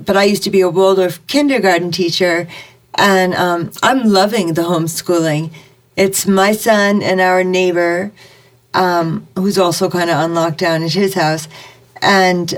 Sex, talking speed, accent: female, 155 wpm, American